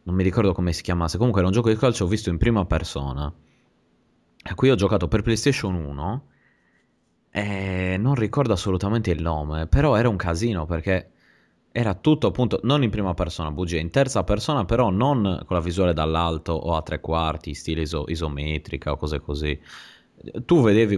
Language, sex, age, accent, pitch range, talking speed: Italian, male, 20-39, native, 80-105 Hz, 185 wpm